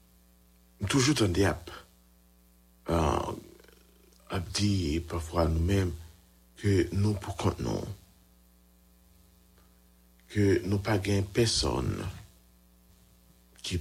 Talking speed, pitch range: 95 wpm, 80-100 Hz